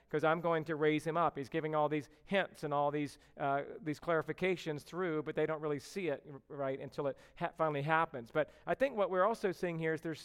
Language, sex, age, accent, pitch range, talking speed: English, male, 40-59, American, 155-215 Hz, 240 wpm